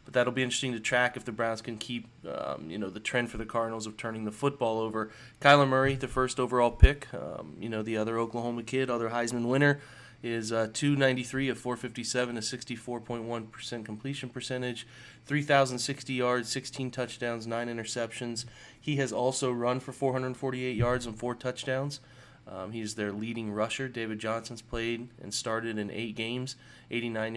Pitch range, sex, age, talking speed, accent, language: 115-130 Hz, male, 20-39, 170 wpm, American, English